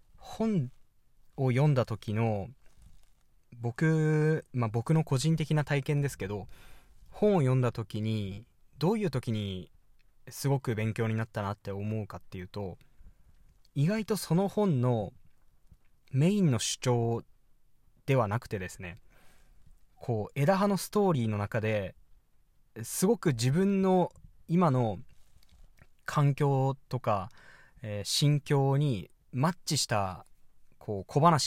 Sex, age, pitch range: male, 20-39, 110-165 Hz